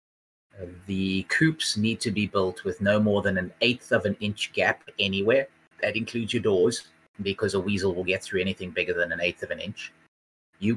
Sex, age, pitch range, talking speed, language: male, 30-49, 85-105 Hz, 200 wpm, English